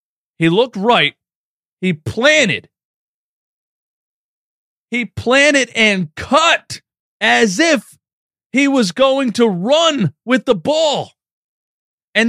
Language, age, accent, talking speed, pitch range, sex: English, 30-49, American, 100 wpm, 220-275 Hz, male